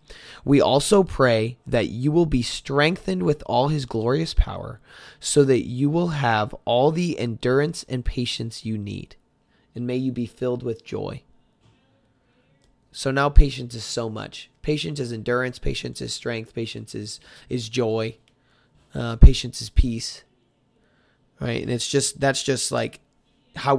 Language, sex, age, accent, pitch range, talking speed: English, male, 20-39, American, 115-145 Hz, 150 wpm